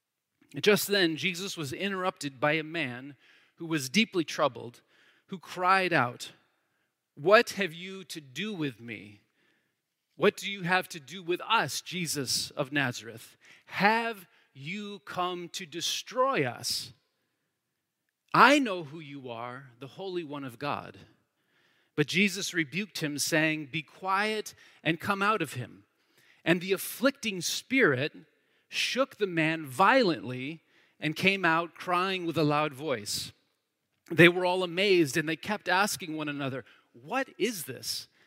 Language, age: English, 30-49